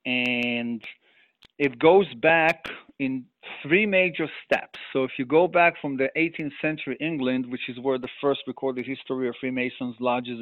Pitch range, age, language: 125-155 Hz, 40-59, English